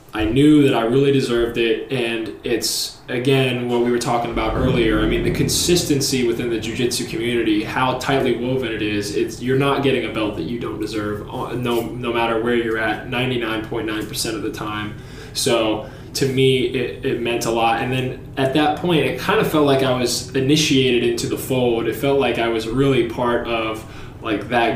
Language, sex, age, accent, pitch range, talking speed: English, male, 20-39, American, 115-135 Hz, 205 wpm